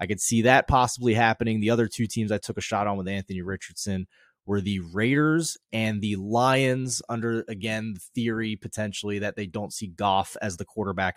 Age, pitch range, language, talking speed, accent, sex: 20-39, 100-130 Hz, English, 200 wpm, American, male